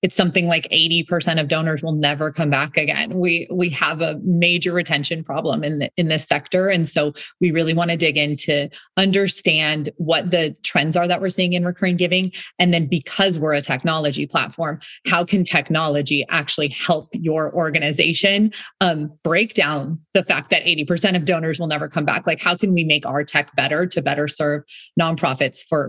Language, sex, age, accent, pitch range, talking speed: English, female, 30-49, American, 150-185 Hz, 190 wpm